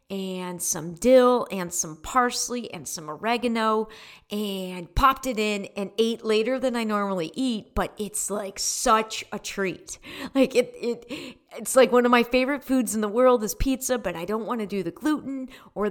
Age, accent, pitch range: 40-59, American, 190-240 Hz